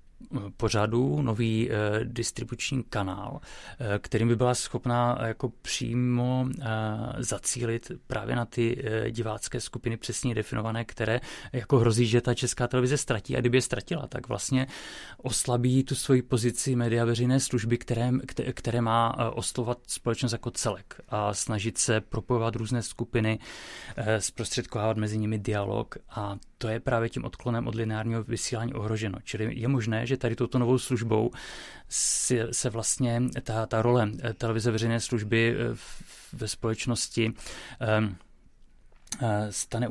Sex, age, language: male, 30-49, Czech